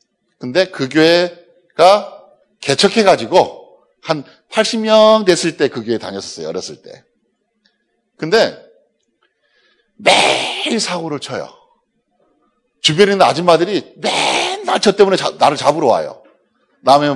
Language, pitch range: Korean, 140-195 Hz